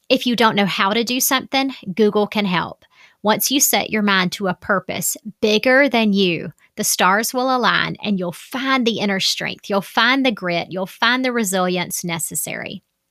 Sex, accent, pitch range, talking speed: female, American, 175-220 Hz, 190 wpm